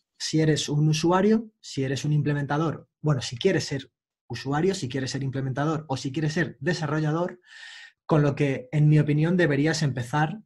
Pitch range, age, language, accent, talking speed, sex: 130-165 Hz, 20-39, Spanish, Spanish, 170 wpm, male